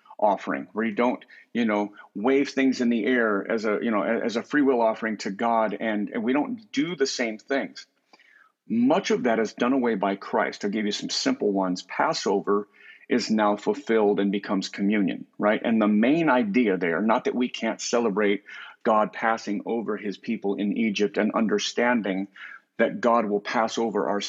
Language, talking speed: English, 190 wpm